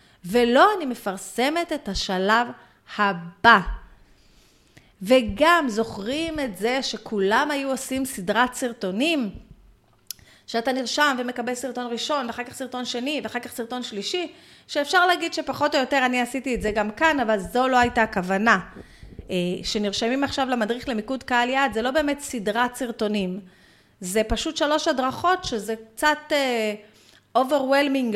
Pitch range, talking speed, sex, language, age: 210-285 Hz, 130 wpm, female, Hebrew, 30-49